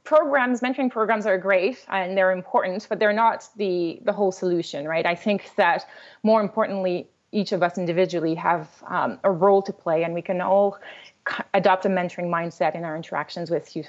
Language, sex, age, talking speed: English, female, 30-49, 190 wpm